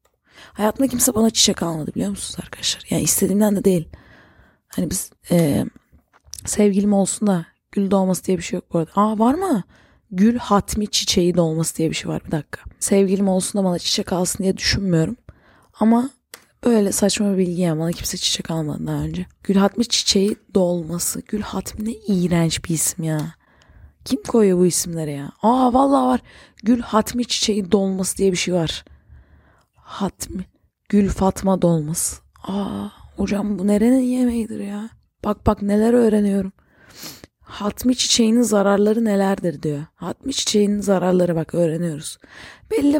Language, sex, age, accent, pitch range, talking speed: English, female, 30-49, Turkish, 180-225 Hz, 155 wpm